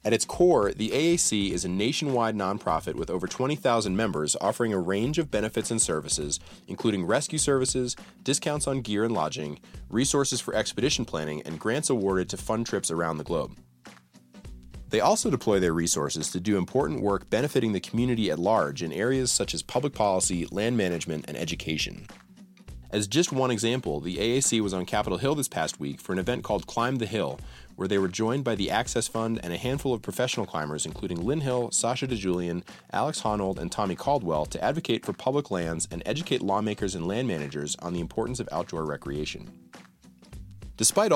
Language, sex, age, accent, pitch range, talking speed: English, male, 30-49, American, 80-125 Hz, 185 wpm